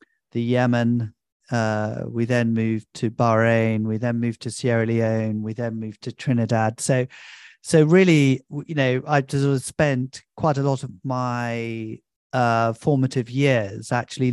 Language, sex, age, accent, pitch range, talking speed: English, male, 40-59, British, 115-140 Hz, 150 wpm